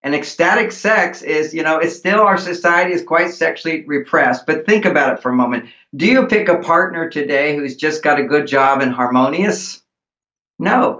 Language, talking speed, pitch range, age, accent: English, 195 wpm, 150-195 Hz, 50-69, American